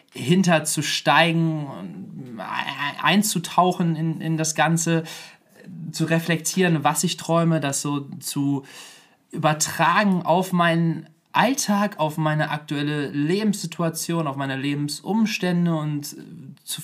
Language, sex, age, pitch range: German, male, 20-39, 140-170 Hz